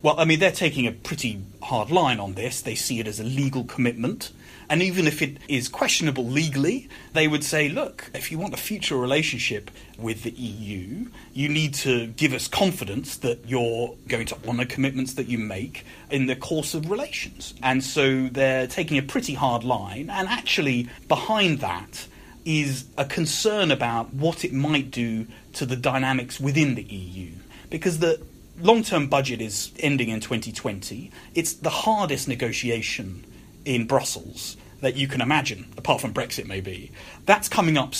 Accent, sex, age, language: British, male, 30-49, English